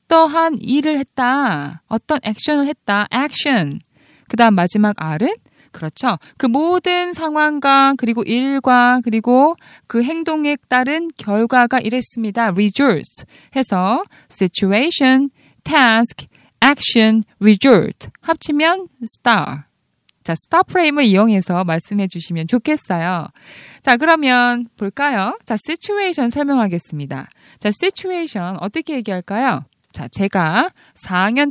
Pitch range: 205-295 Hz